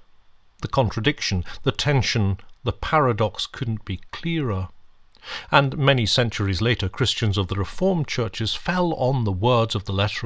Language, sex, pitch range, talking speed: English, male, 90-125 Hz, 145 wpm